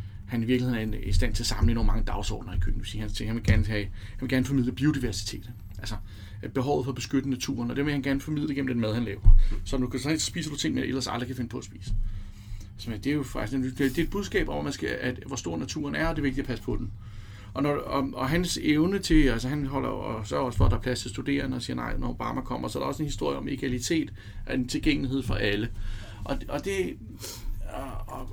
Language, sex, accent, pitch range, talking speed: Danish, male, native, 105-130 Hz, 235 wpm